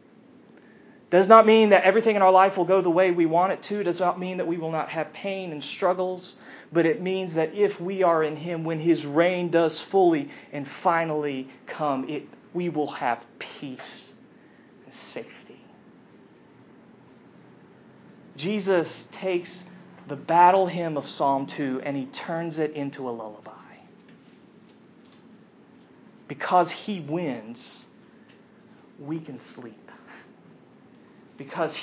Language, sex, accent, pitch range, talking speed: English, male, American, 160-230 Hz, 140 wpm